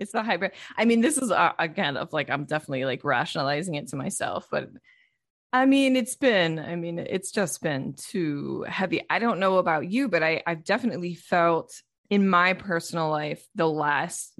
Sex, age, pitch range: female, 20-39, 155-200 Hz